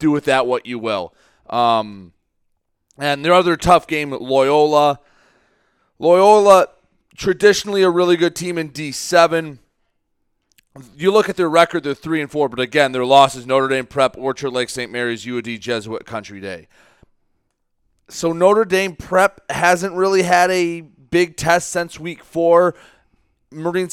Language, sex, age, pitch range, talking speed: English, male, 30-49, 135-175 Hz, 155 wpm